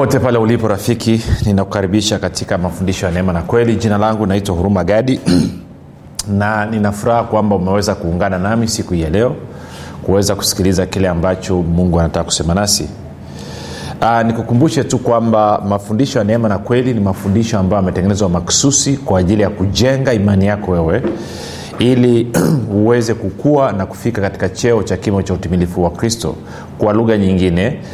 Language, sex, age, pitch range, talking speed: Swahili, male, 30-49, 95-125 Hz, 150 wpm